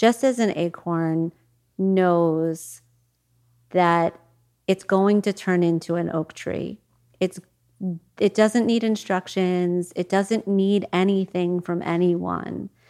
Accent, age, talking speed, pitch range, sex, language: American, 40-59, 115 wpm, 165-195 Hz, female, English